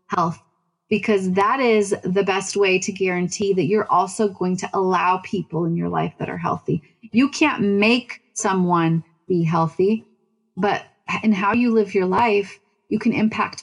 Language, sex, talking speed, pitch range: English, female, 165 wpm, 185-215 Hz